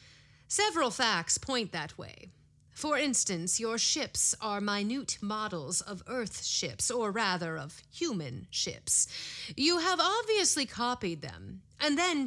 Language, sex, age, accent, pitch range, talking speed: English, female, 30-49, American, 175-255 Hz, 130 wpm